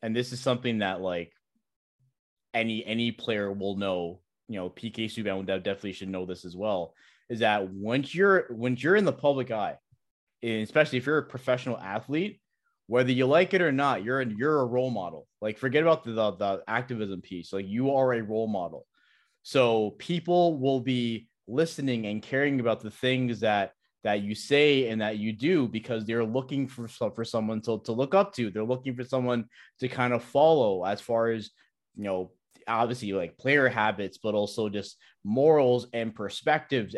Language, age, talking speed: English, 20-39, 190 wpm